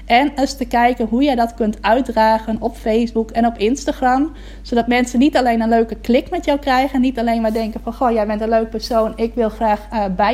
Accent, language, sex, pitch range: Dutch, Dutch, female, 220-245 Hz